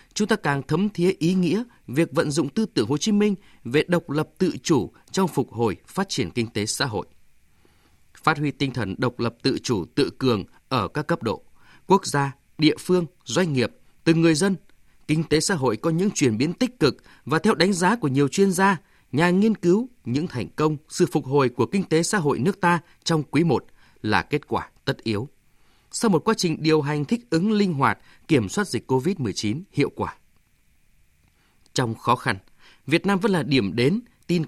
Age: 20-39